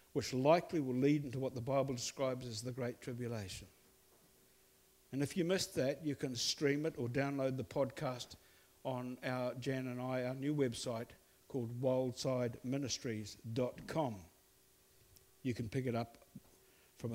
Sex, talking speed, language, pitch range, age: male, 145 wpm, English, 115-145 Hz, 60-79